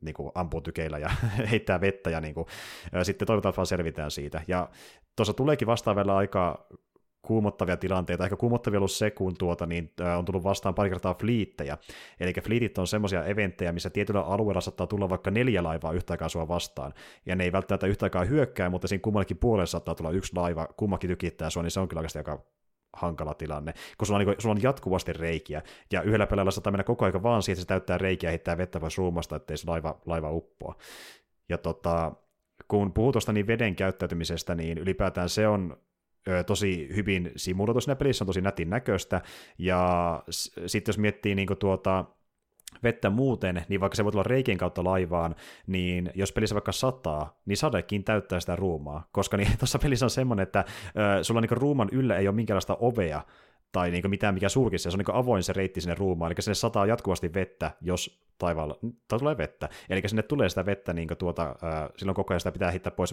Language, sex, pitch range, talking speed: Finnish, male, 85-105 Hz, 195 wpm